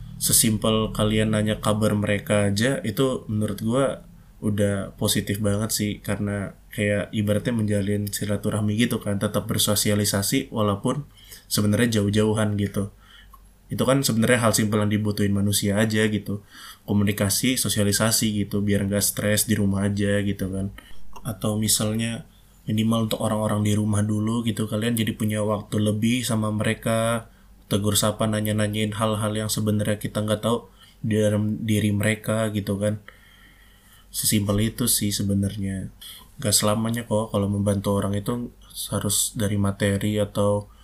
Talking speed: 135 wpm